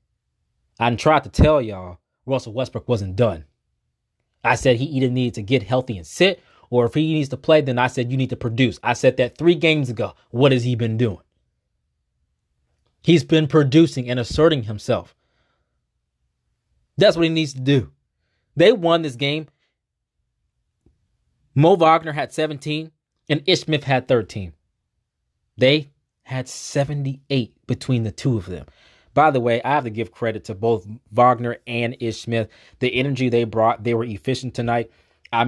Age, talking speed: 20-39, 165 wpm